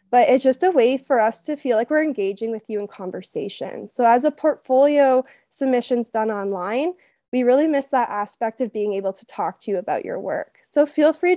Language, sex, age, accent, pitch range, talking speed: English, female, 20-39, American, 215-270 Hz, 215 wpm